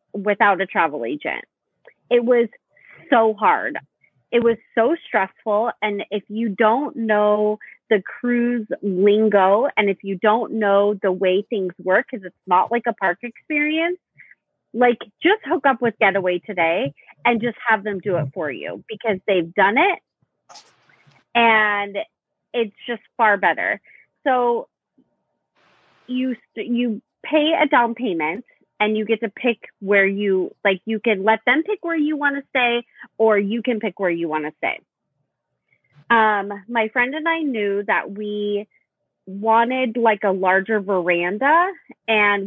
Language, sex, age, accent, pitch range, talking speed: English, female, 30-49, American, 195-240 Hz, 150 wpm